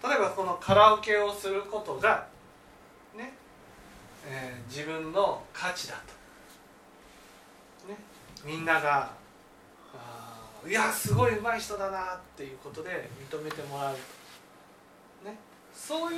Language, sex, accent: Japanese, male, native